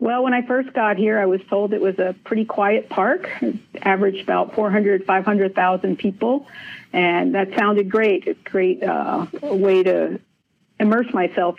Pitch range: 185-220 Hz